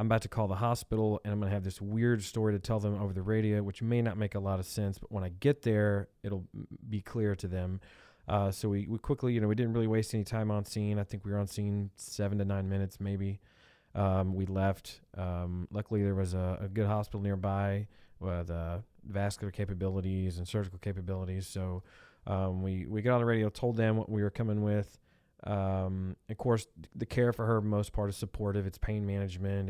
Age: 20-39